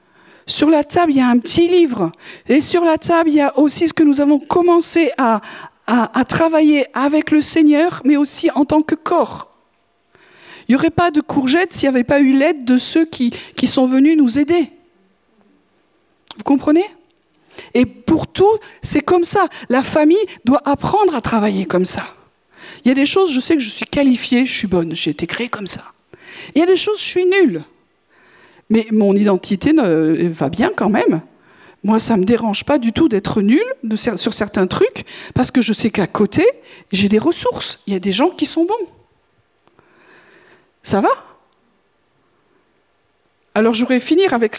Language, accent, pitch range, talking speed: French, French, 220-330 Hz, 190 wpm